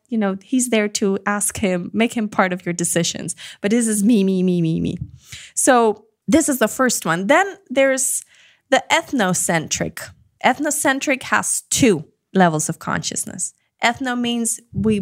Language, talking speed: English, 160 wpm